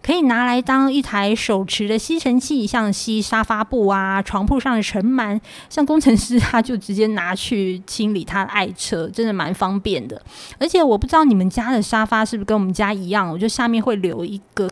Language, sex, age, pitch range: Chinese, female, 20-39, 205-270 Hz